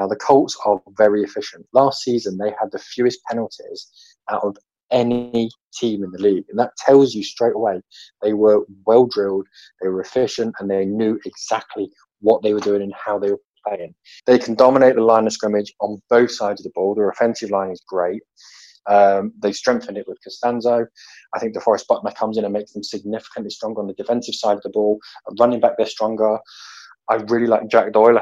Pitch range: 105-120 Hz